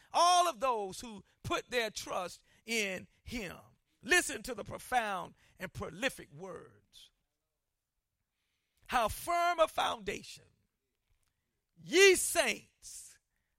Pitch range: 240-335 Hz